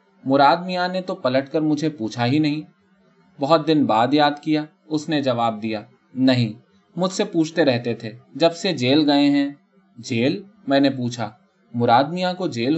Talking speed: 175 wpm